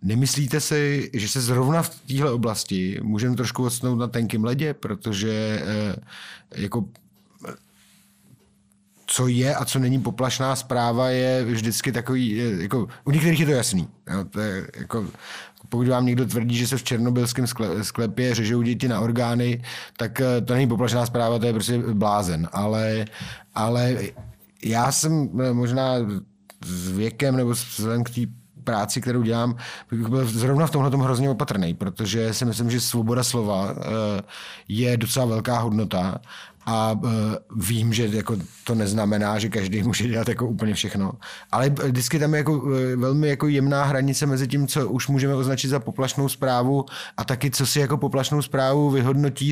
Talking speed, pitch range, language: 155 wpm, 110-135 Hz, Czech